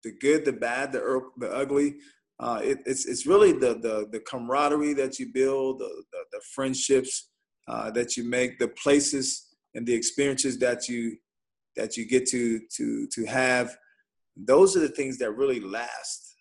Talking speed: 175 wpm